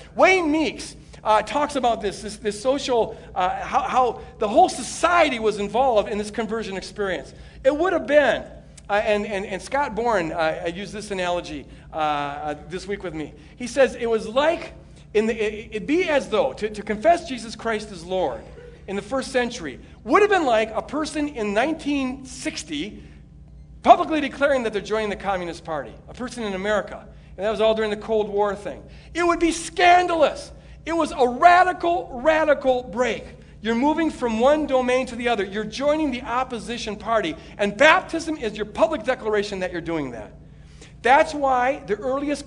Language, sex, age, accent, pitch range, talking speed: English, male, 50-69, American, 200-280 Hz, 185 wpm